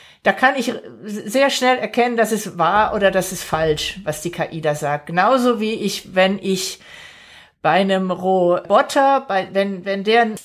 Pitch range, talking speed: 185-230 Hz, 170 wpm